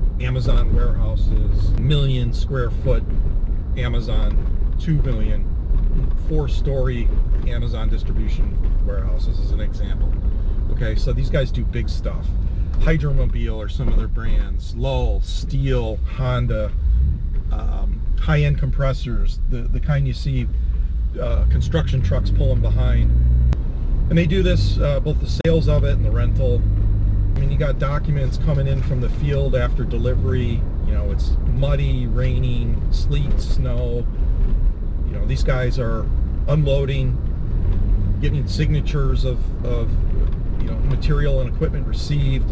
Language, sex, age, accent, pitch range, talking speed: English, male, 40-59, American, 70-110 Hz, 130 wpm